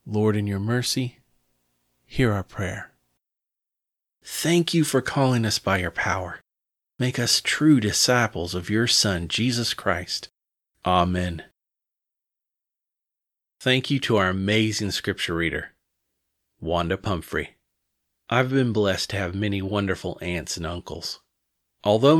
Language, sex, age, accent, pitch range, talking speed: English, male, 30-49, American, 90-120 Hz, 120 wpm